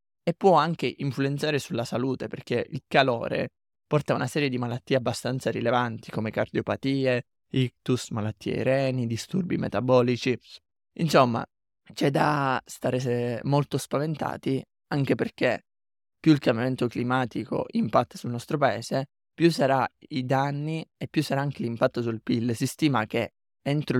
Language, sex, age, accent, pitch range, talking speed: Italian, male, 20-39, native, 120-140 Hz, 140 wpm